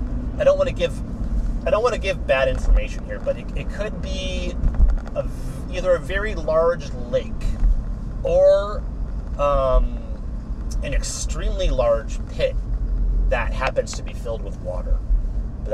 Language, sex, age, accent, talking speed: English, male, 30-49, American, 145 wpm